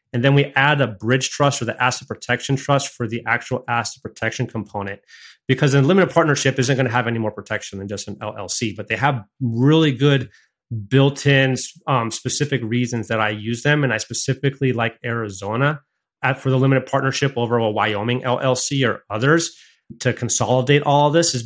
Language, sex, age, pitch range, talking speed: English, male, 30-49, 110-140 Hz, 190 wpm